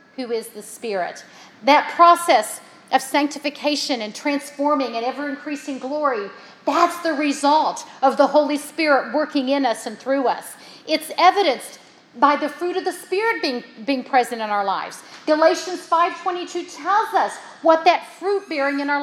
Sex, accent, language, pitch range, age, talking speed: female, American, English, 265-340 Hz, 50-69, 160 wpm